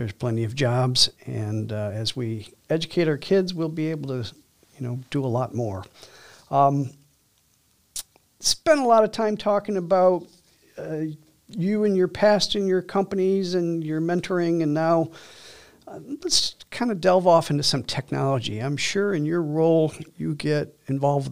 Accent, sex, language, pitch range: American, male, English, 125-165 Hz